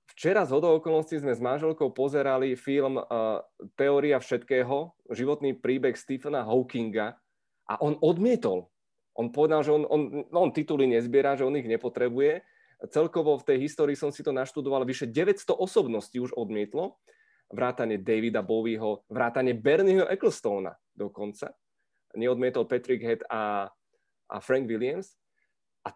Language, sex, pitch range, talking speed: Czech, male, 120-155 Hz, 135 wpm